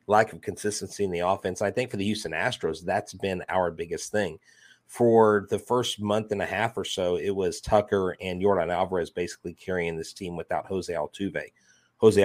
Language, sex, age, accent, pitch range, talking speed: English, male, 30-49, American, 95-115 Hz, 195 wpm